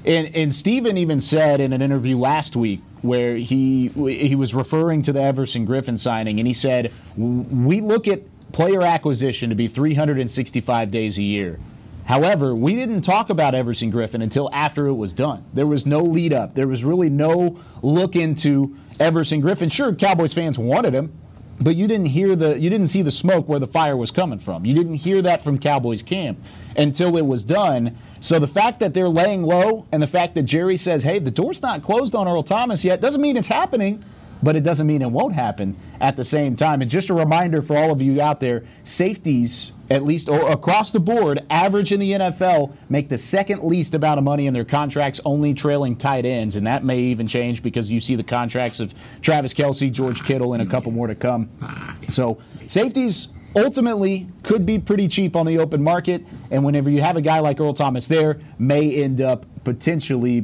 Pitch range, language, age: 125-170 Hz, English, 30-49